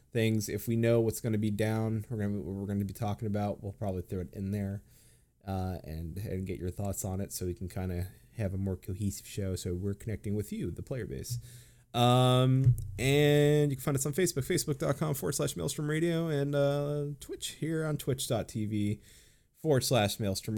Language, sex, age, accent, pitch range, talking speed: English, male, 20-39, American, 100-130 Hz, 200 wpm